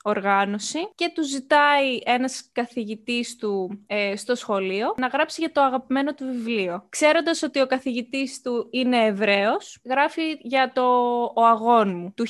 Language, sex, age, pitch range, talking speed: Greek, female, 20-39, 210-270 Hz, 140 wpm